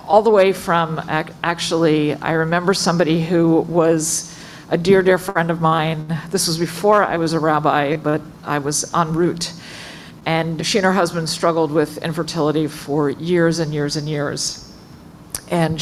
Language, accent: English, American